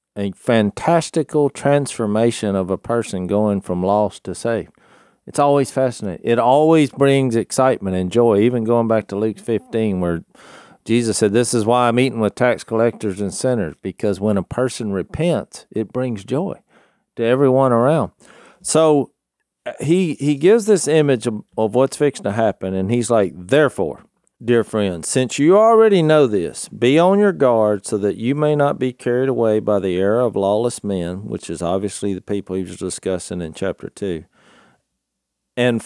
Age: 50-69